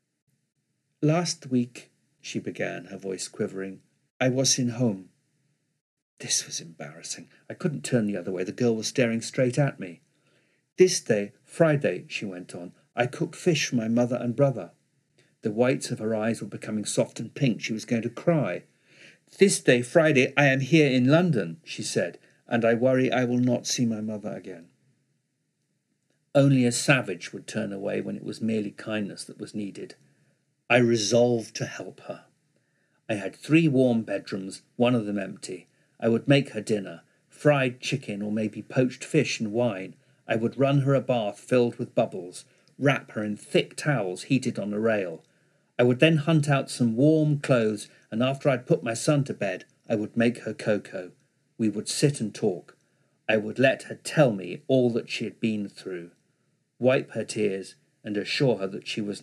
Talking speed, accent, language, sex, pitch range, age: 185 wpm, British, English, male, 110-140 Hz, 50-69